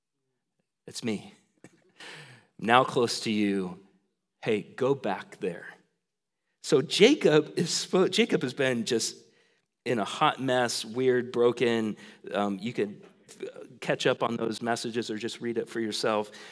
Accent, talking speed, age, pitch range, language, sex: American, 135 wpm, 40-59, 105-135 Hz, English, male